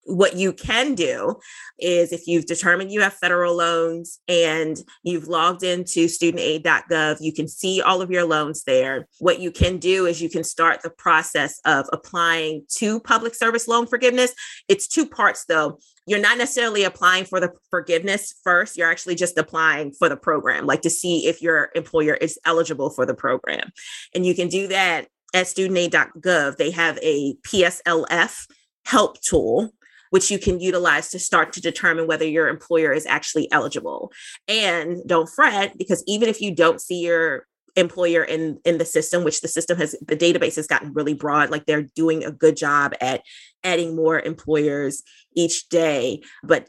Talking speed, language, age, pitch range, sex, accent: 175 wpm, English, 20-39, 160-190 Hz, female, American